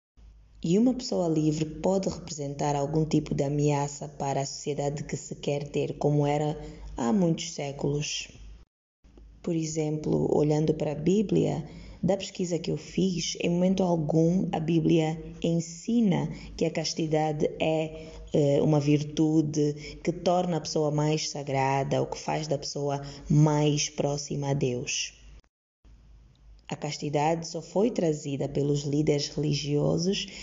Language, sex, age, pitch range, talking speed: Portuguese, female, 20-39, 145-175 Hz, 135 wpm